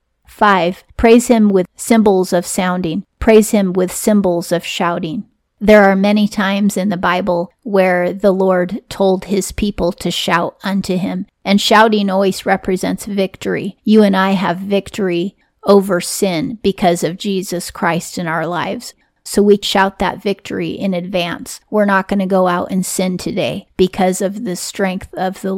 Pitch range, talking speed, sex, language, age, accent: 180-210 Hz, 165 wpm, female, English, 40-59, American